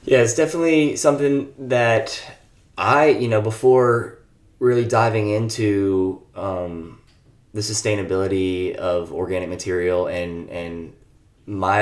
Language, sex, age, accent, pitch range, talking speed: English, male, 20-39, American, 95-115 Hz, 105 wpm